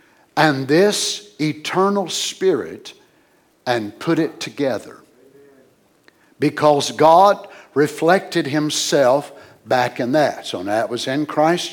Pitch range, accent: 135-185 Hz, American